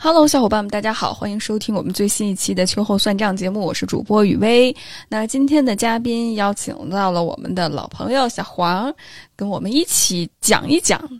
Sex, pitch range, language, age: female, 190-240 Hz, Chinese, 10-29